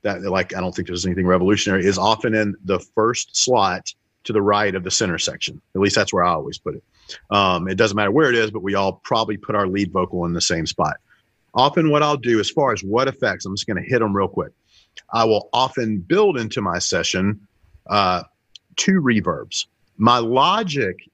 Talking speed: 220 wpm